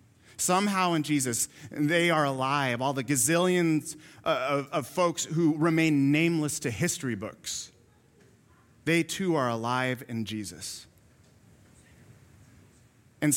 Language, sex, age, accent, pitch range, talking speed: English, male, 30-49, American, 110-140 Hz, 110 wpm